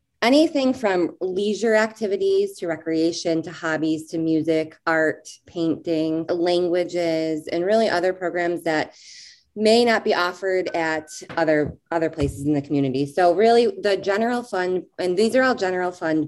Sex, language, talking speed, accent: female, English, 145 wpm, American